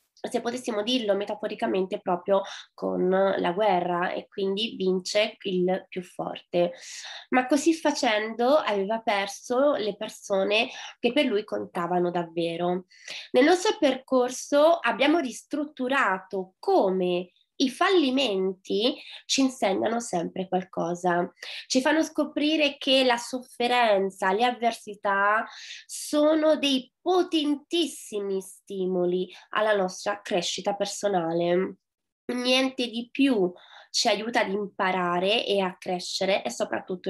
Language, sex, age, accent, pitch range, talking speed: Italian, female, 20-39, native, 190-260 Hz, 105 wpm